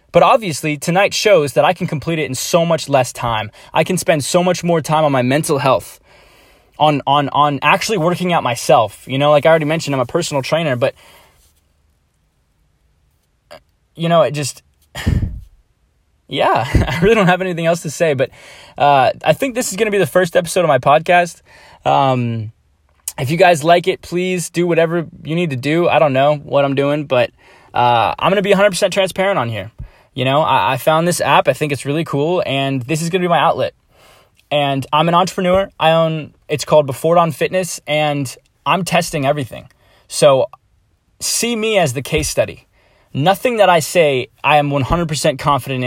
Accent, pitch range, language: American, 135-170 Hz, English